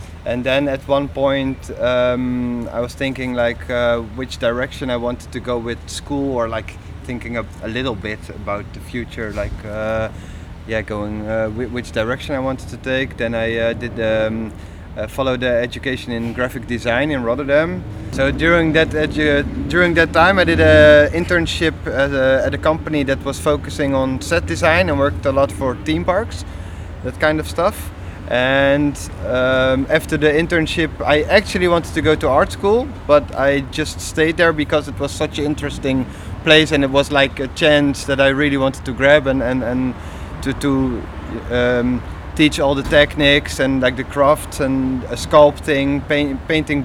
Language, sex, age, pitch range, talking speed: Danish, male, 30-49, 115-150 Hz, 185 wpm